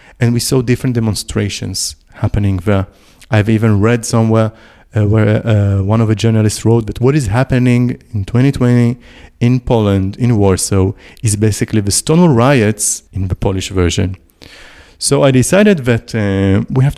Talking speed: 160 wpm